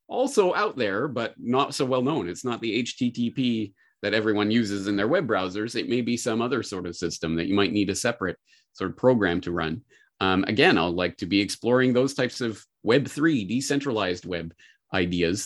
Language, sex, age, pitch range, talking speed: English, male, 30-49, 105-150 Hz, 200 wpm